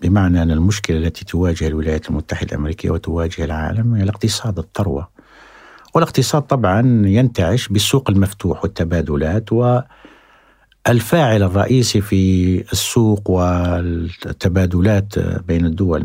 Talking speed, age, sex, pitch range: 95 wpm, 60-79, male, 90-120 Hz